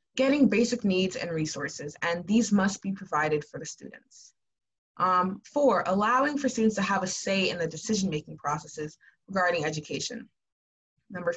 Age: 20-39